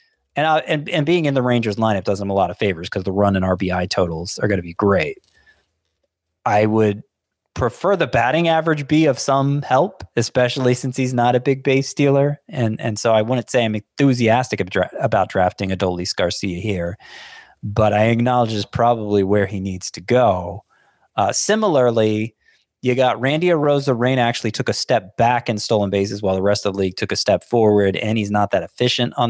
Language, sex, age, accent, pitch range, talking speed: English, male, 20-39, American, 105-130 Hz, 200 wpm